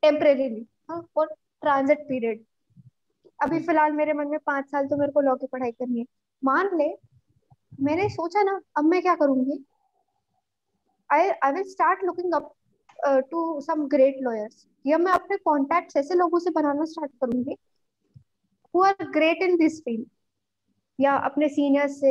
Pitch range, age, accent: 270-360 Hz, 20-39, native